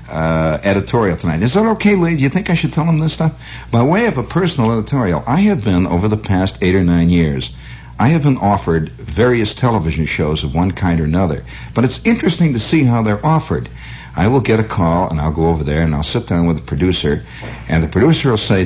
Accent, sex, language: American, male, English